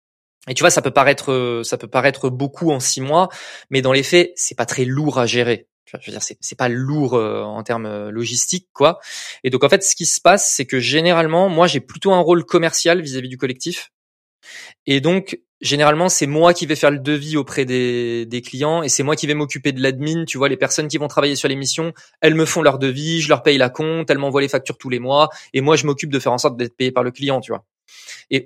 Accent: French